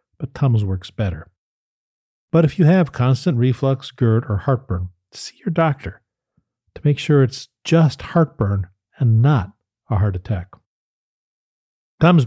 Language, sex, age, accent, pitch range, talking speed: English, male, 40-59, American, 105-145 Hz, 135 wpm